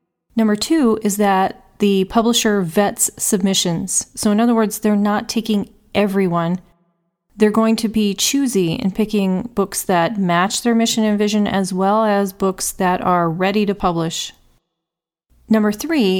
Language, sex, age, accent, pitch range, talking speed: English, female, 30-49, American, 185-225 Hz, 150 wpm